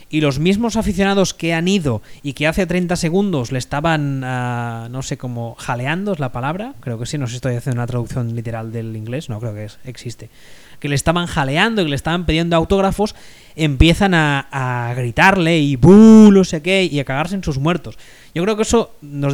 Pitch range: 135-170 Hz